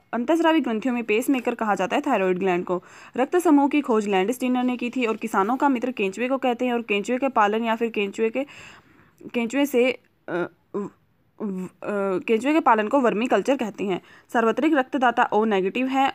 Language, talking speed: Hindi, 195 wpm